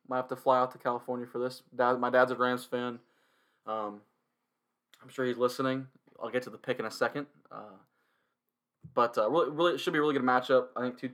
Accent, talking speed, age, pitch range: American, 230 wpm, 20-39, 110-125 Hz